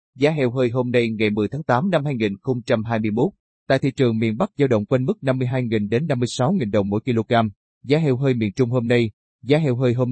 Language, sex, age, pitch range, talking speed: Vietnamese, male, 20-39, 110-135 Hz, 220 wpm